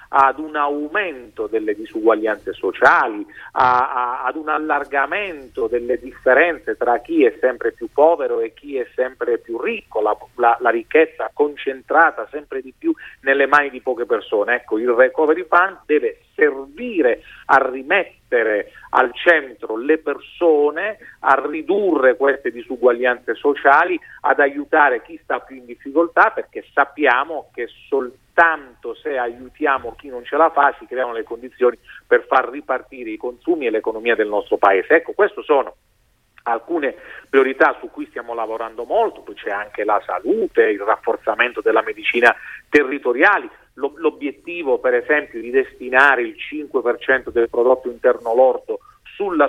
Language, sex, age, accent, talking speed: Italian, male, 40-59, native, 145 wpm